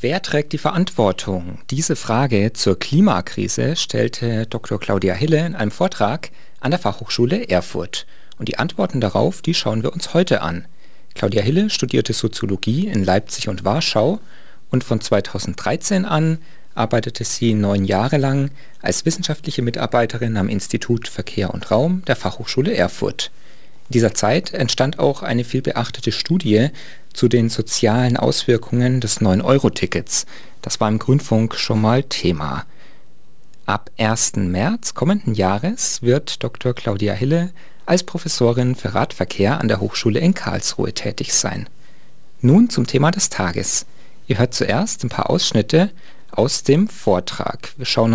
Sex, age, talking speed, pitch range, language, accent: male, 40-59, 145 wpm, 105-150 Hz, German, German